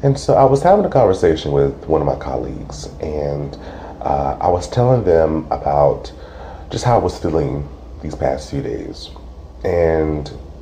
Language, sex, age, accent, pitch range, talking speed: English, male, 30-49, American, 75-110 Hz, 165 wpm